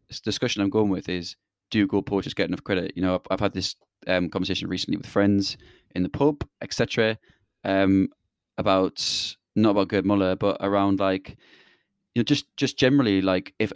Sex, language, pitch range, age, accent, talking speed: male, English, 95-105 Hz, 20-39, British, 185 wpm